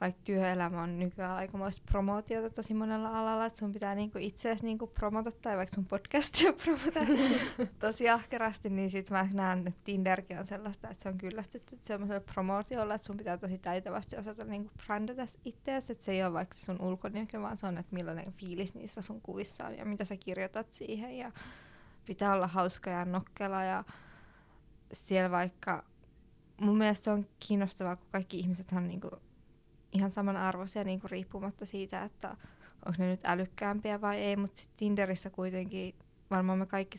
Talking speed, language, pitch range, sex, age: 165 wpm, Finnish, 185-215 Hz, female, 20-39